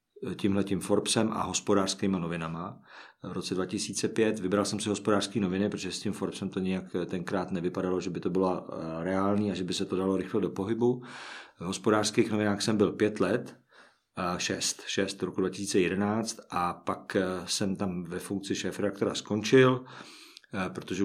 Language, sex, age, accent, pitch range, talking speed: Czech, male, 50-69, native, 95-110 Hz, 160 wpm